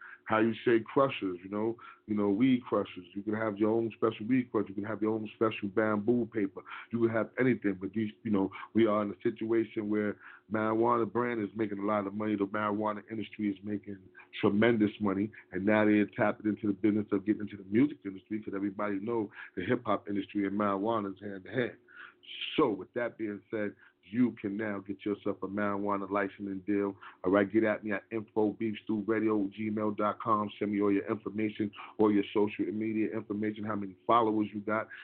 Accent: American